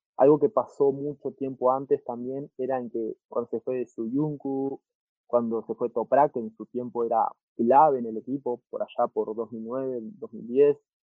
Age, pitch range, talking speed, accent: 20-39, 120-155 Hz, 180 wpm, Argentinian